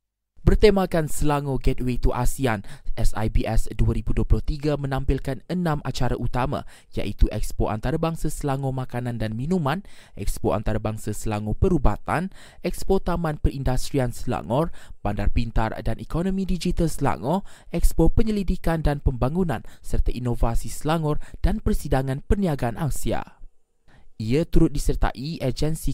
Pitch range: 115-155 Hz